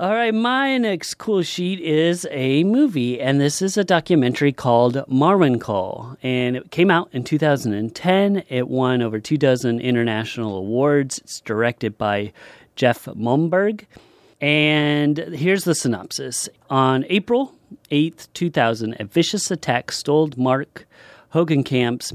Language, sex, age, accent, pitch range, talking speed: English, male, 30-49, American, 115-155 Hz, 135 wpm